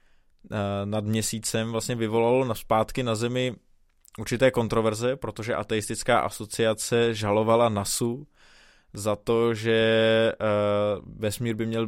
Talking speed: 100 wpm